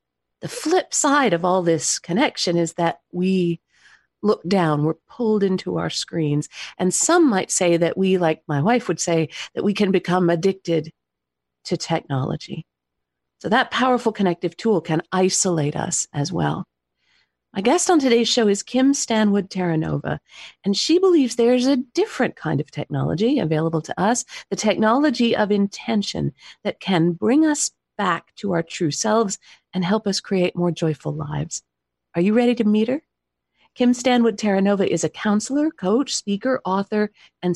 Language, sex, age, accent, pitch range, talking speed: English, female, 50-69, American, 160-225 Hz, 165 wpm